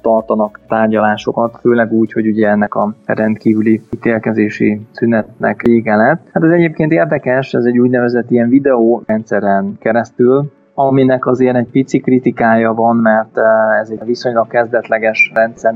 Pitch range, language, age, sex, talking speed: 105-120 Hz, Hungarian, 20-39, male, 135 wpm